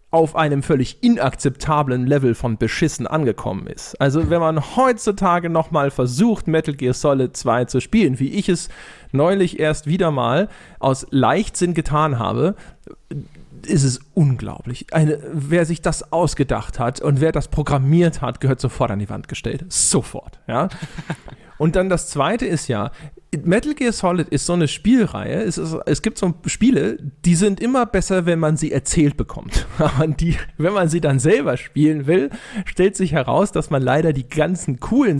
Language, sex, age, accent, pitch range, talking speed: German, male, 40-59, German, 140-175 Hz, 165 wpm